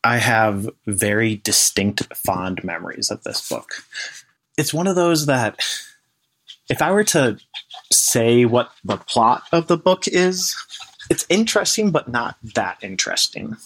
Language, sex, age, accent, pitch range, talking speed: English, male, 30-49, American, 100-125 Hz, 140 wpm